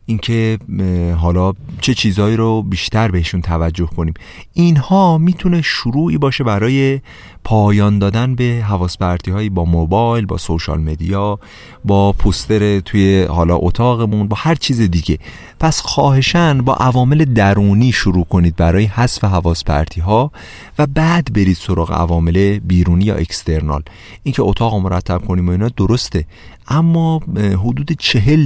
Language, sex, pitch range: Persian, male, 90-125 Hz